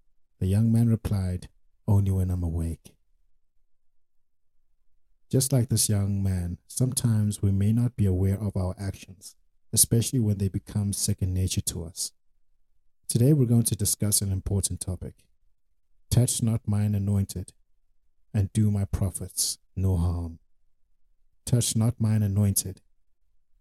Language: English